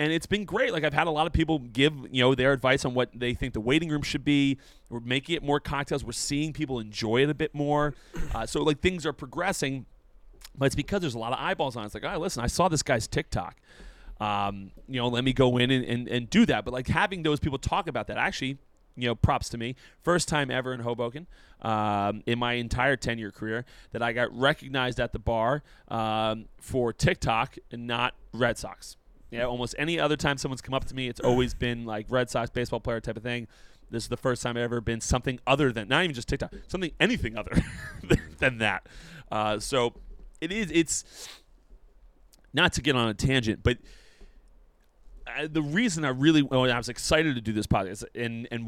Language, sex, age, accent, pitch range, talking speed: English, male, 30-49, American, 115-145 Hz, 225 wpm